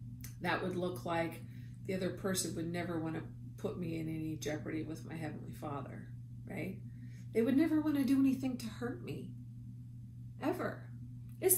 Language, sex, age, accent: English, female, 40-59, American